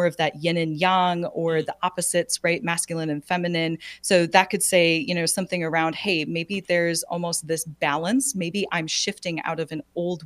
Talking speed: 195 wpm